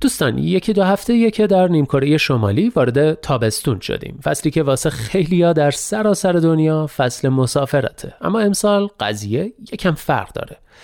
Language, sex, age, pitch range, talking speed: Persian, male, 30-49, 120-200 Hz, 145 wpm